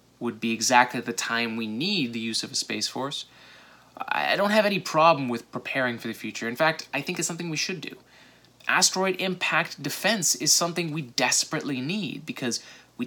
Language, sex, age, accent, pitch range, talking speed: English, male, 20-39, American, 125-170 Hz, 195 wpm